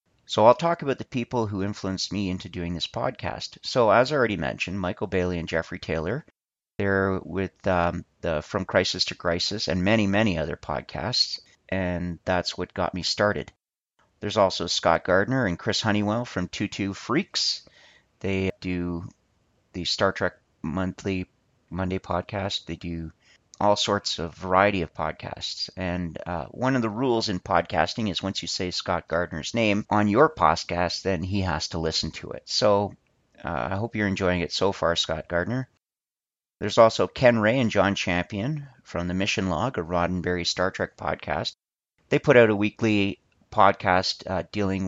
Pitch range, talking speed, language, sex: 90-105 Hz, 170 wpm, English, male